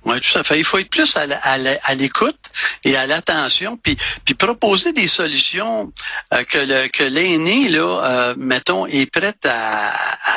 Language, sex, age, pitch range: French, male, 60-79, 135-195 Hz